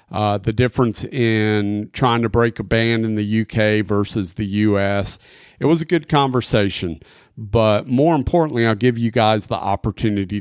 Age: 40-59